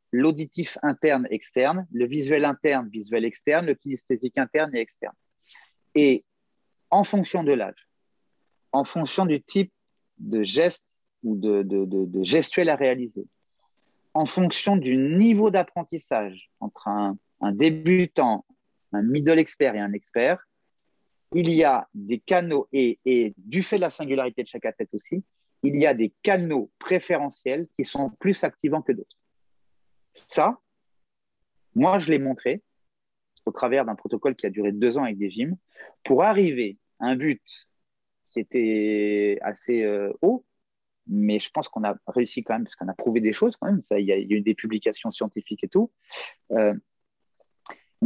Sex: male